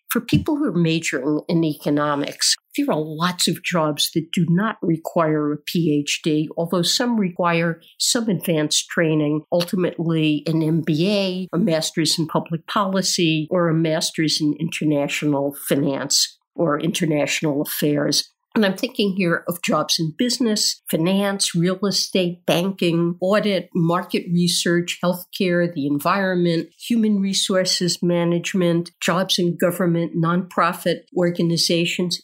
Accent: American